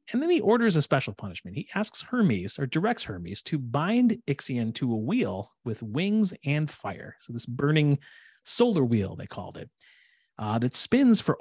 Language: English